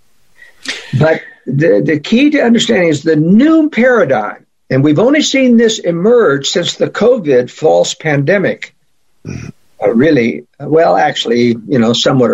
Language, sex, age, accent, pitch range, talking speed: English, male, 60-79, American, 130-190 Hz, 135 wpm